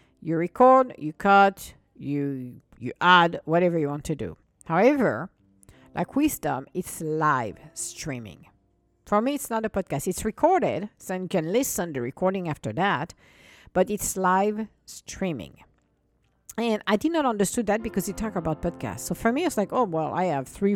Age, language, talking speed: 50-69, English, 175 wpm